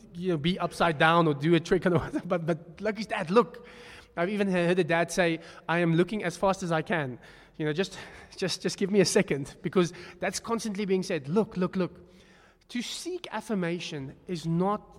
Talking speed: 210 wpm